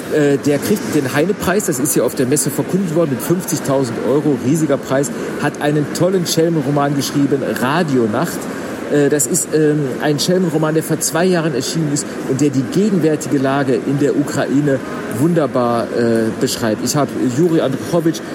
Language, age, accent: German, 50-69, German